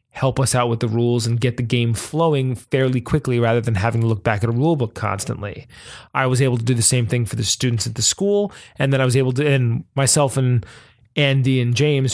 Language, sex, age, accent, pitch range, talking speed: English, male, 20-39, American, 115-145 Hz, 245 wpm